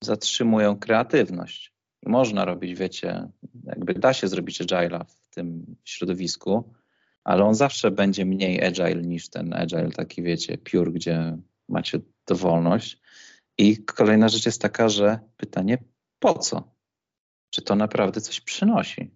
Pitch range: 100-120 Hz